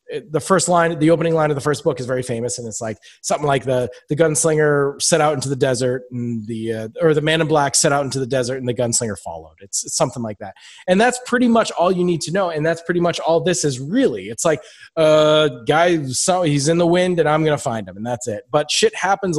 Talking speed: 265 wpm